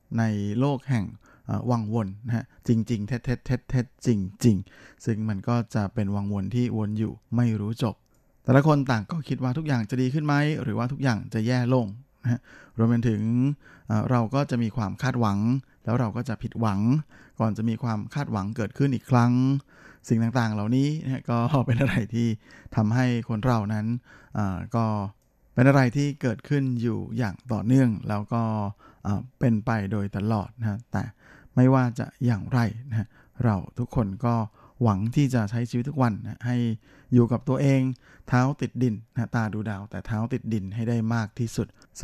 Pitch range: 110-130 Hz